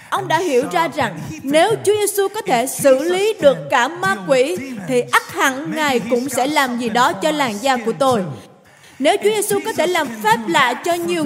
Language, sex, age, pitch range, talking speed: Vietnamese, female, 20-39, 260-370 Hz, 215 wpm